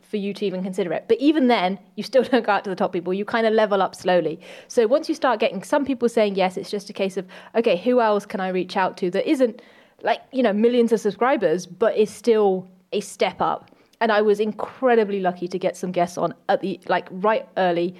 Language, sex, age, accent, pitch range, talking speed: English, female, 30-49, British, 190-245 Hz, 250 wpm